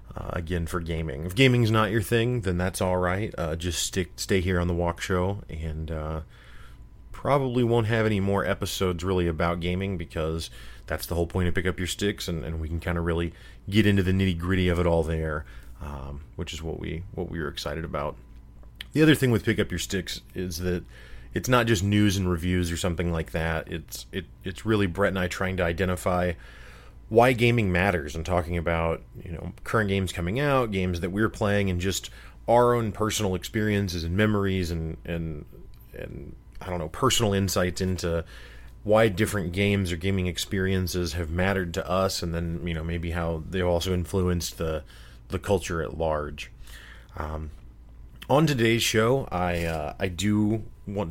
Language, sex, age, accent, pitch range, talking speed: English, male, 30-49, American, 85-100 Hz, 195 wpm